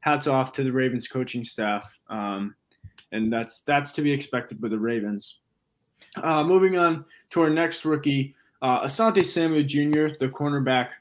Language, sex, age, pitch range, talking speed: English, male, 20-39, 130-155 Hz, 165 wpm